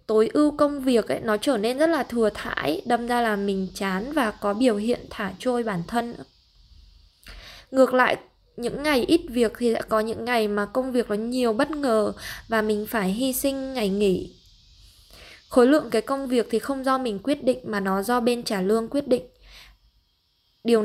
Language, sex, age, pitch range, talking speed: Vietnamese, female, 20-39, 205-245 Hz, 200 wpm